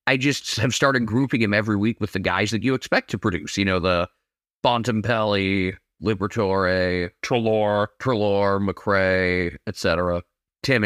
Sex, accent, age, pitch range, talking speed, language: male, American, 20-39, 100-135 Hz, 145 wpm, English